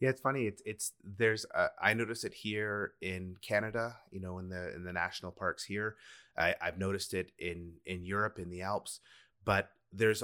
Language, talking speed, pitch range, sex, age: English, 200 wpm, 95-110 Hz, male, 30-49